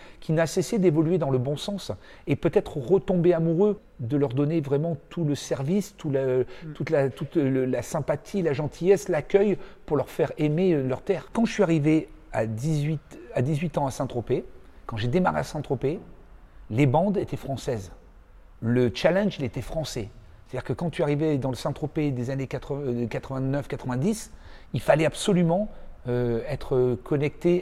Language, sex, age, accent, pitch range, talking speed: French, male, 40-59, French, 130-180 Hz, 170 wpm